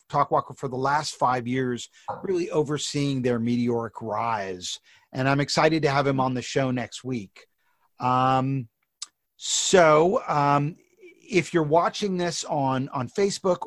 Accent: American